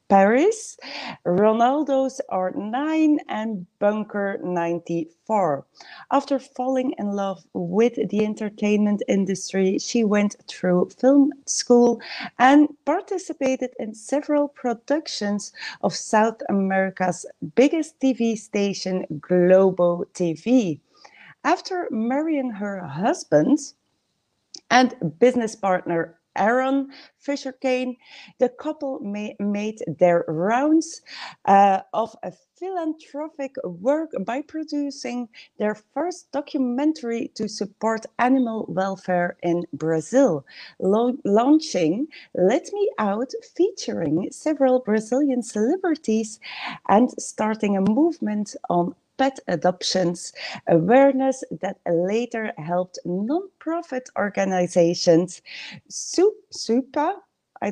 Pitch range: 195-285 Hz